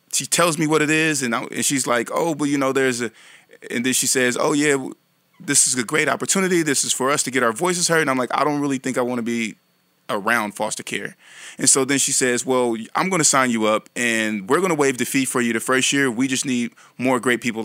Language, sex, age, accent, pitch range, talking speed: English, male, 20-39, American, 115-135 Hz, 270 wpm